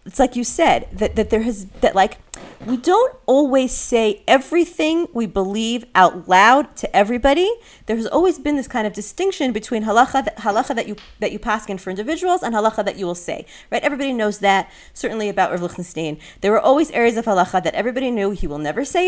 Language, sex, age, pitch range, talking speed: English, female, 30-49, 200-305 Hz, 210 wpm